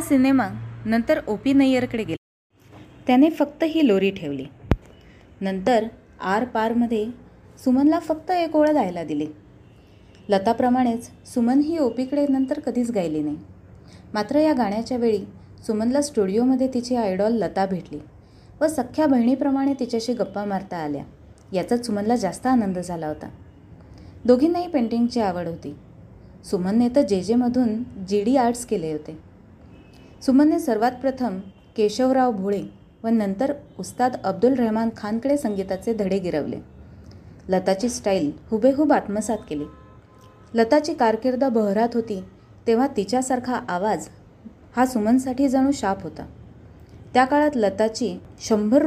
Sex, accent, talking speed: female, native, 120 wpm